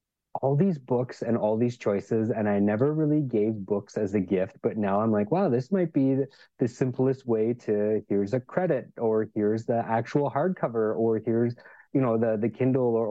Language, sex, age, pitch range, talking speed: English, male, 30-49, 105-125 Hz, 200 wpm